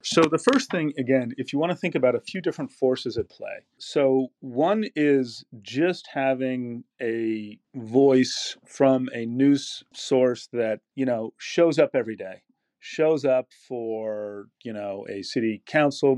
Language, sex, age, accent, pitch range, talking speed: English, male, 40-59, American, 110-140 Hz, 160 wpm